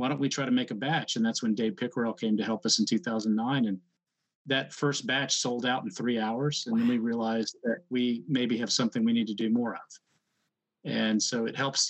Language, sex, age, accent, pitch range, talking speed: English, male, 40-59, American, 120-150 Hz, 235 wpm